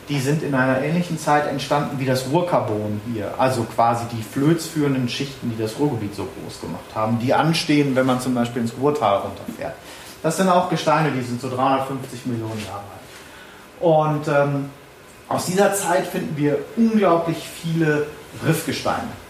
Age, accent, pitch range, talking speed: 30-49, German, 120-150 Hz, 165 wpm